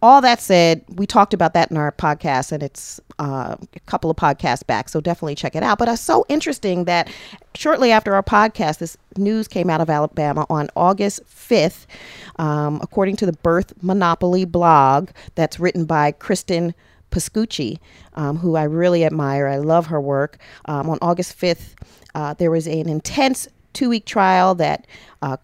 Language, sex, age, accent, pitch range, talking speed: English, female, 40-59, American, 155-195 Hz, 175 wpm